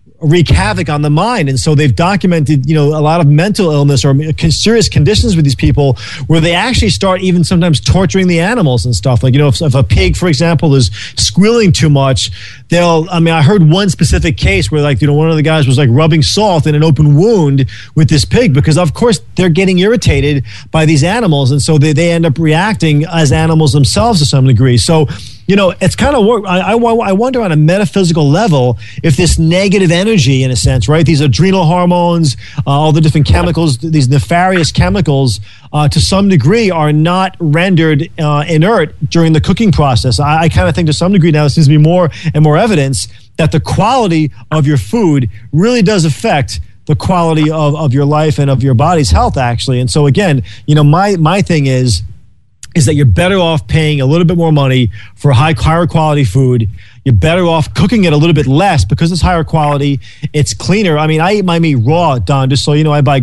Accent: American